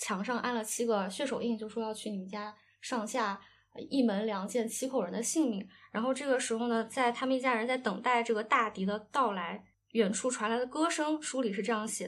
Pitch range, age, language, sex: 220-270 Hz, 10-29, Chinese, female